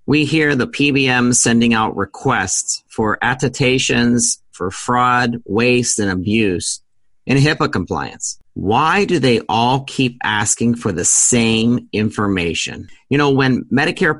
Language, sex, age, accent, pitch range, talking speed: English, male, 40-59, American, 105-135 Hz, 130 wpm